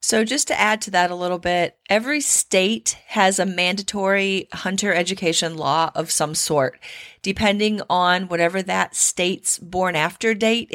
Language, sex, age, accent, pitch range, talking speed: English, female, 30-49, American, 175-215 Hz, 155 wpm